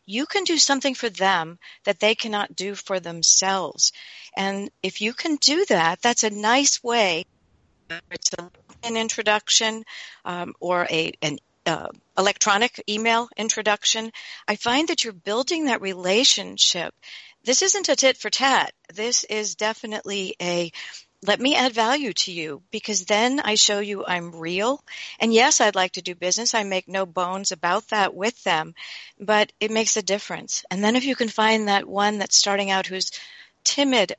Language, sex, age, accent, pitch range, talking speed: English, female, 50-69, American, 180-225 Hz, 170 wpm